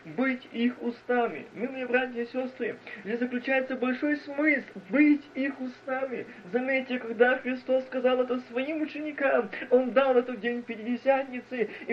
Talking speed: 140 wpm